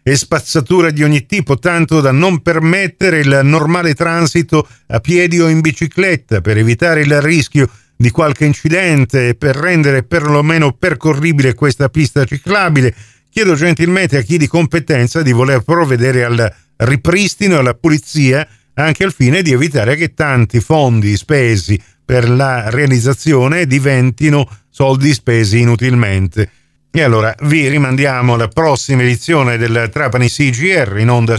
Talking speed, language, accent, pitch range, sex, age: 140 wpm, Italian, native, 120-160 Hz, male, 50-69